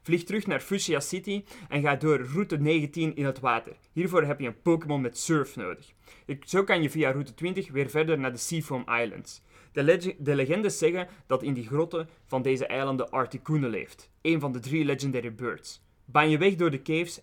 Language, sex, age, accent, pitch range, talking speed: Dutch, male, 20-39, Dutch, 125-160 Hz, 205 wpm